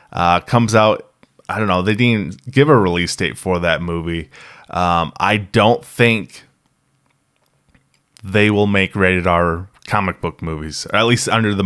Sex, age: male, 20-39